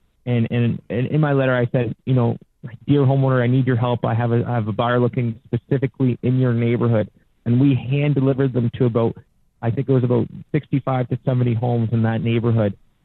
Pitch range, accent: 115-130 Hz, American